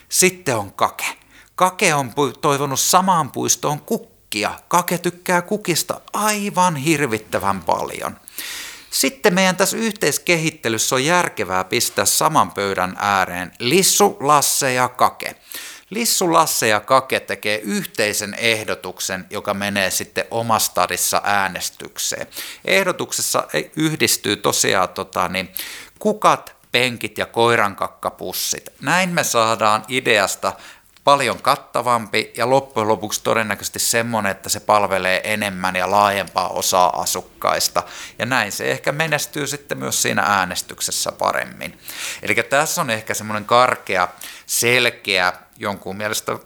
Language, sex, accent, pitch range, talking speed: Finnish, male, native, 105-160 Hz, 110 wpm